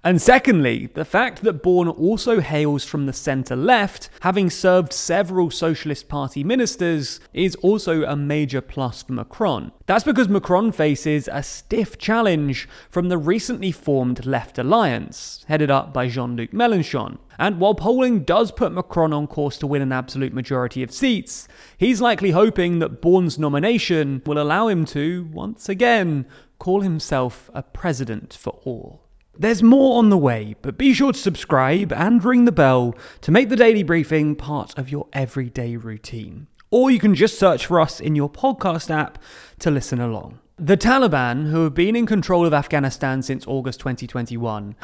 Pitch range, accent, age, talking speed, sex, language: 135-195 Hz, British, 30-49, 165 wpm, male, English